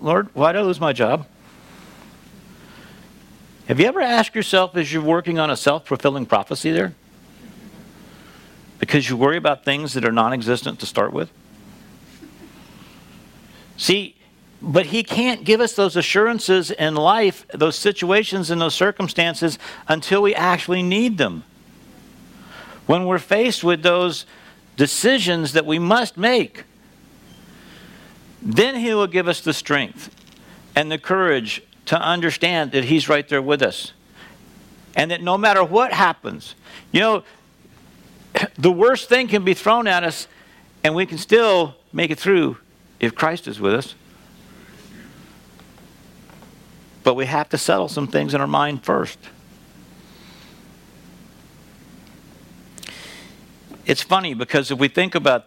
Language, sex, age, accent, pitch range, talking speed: English, male, 60-79, American, 150-195 Hz, 135 wpm